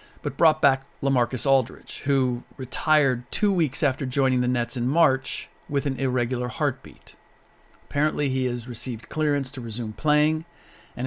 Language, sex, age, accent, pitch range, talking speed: English, male, 40-59, American, 120-145 Hz, 150 wpm